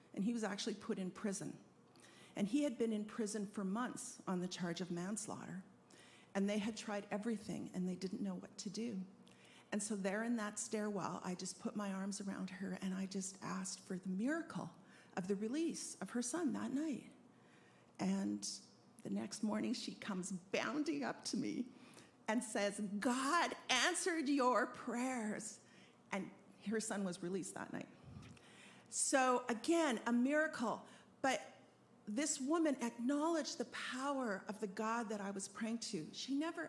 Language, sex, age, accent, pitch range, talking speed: English, female, 50-69, American, 195-250 Hz, 170 wpm